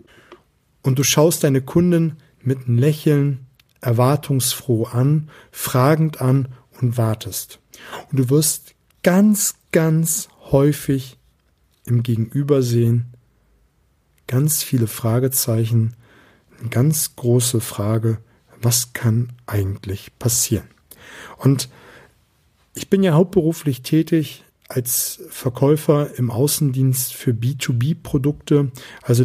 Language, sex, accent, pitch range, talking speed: German, male, German, 120-150 Hz, 95 wpm